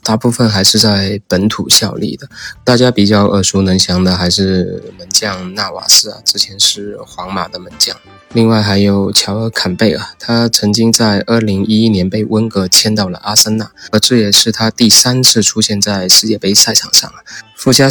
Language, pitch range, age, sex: Chinese, 95-110 Hz, 20-39, male